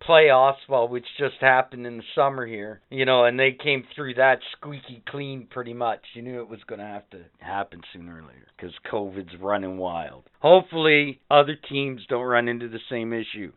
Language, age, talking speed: English, 50-69, 195 wpm